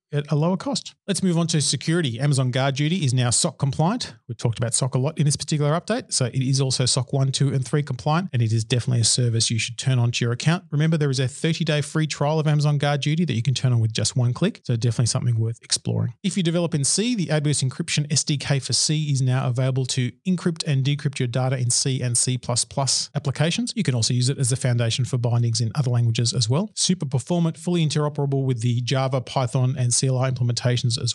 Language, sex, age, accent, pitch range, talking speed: English, male, 40-59, Australian, 125-150 Hz, 245 wpm